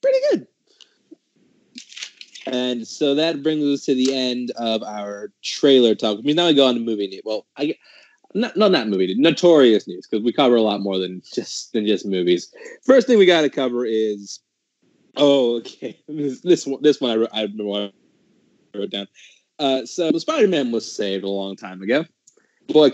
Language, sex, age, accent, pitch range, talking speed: English, male, 20-39, American, 110-155 Hz, 190 wpm